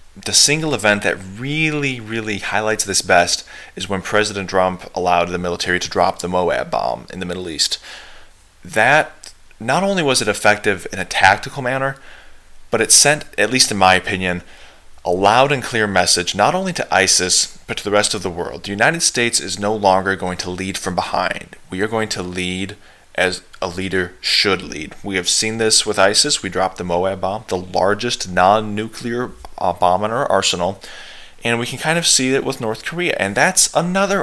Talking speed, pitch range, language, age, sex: 195 wpm, 90-120 Hz, English, 20-39, male